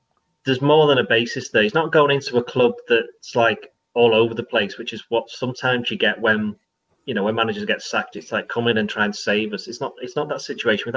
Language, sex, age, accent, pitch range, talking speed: English, male, 30-49, British, 115-135 Hz, 255 wpm